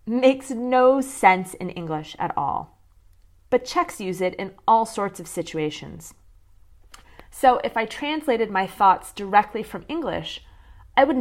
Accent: American